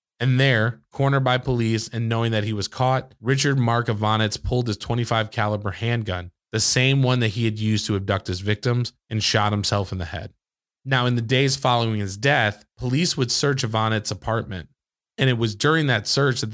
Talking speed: 200 wpm